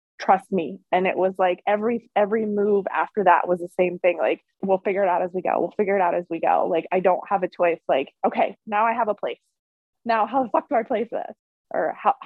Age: 20-39